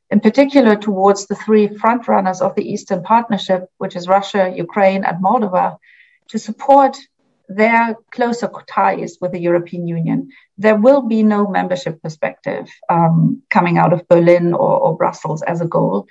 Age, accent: 40-59, German